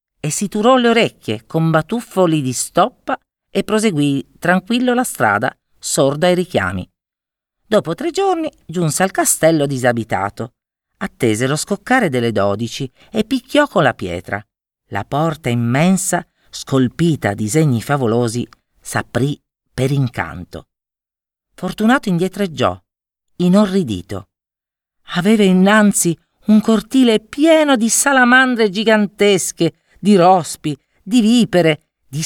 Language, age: Italian, 40-59